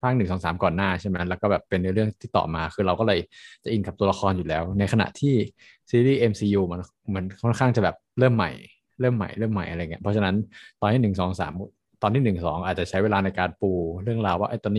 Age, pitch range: 20-39, 95-120 Hz